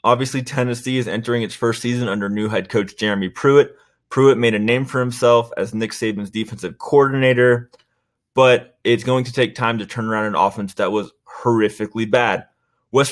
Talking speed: 185 wpm